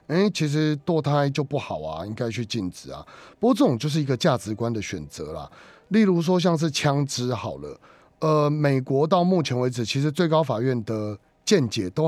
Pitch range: 115-155 Hz